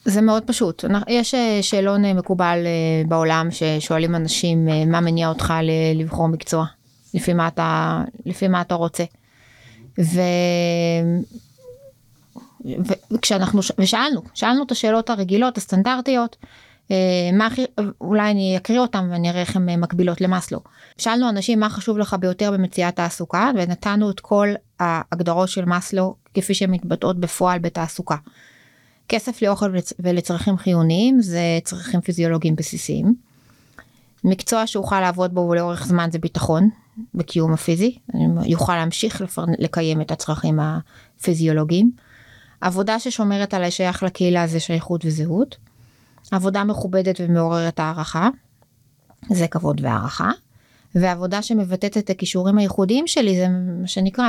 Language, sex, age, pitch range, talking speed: Hebrew, female, 20-39, 165-205 Hz, 120 wpm